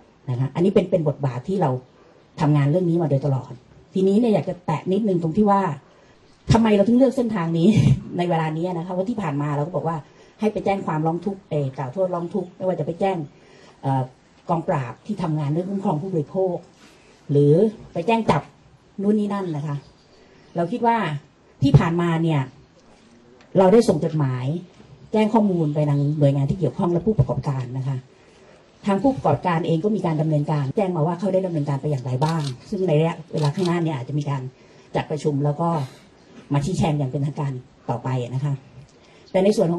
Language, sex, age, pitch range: Thai, female, 30-49, 145-195 Hz